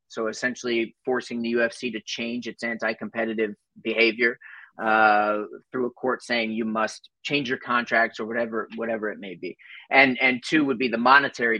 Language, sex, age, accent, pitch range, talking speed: English, male, 30-49, American, 110-125 Hz, 170 wpm